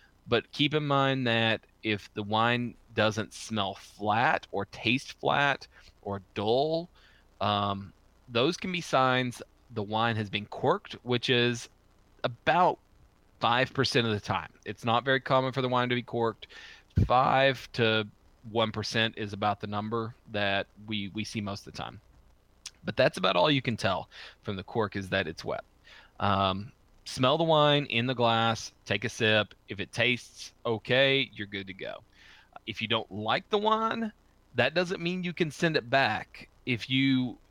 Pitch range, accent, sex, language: 105-135 Hz, American, male, English